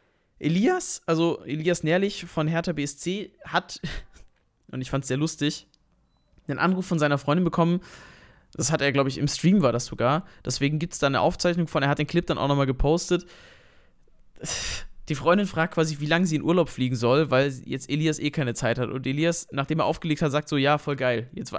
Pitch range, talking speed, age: 135-165 Hz, 210 wpm, 20-39